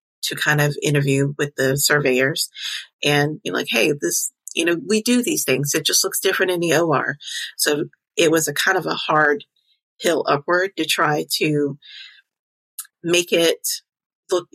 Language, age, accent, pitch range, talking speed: English, 30-49, American, 145-160 Hz, 170 wpm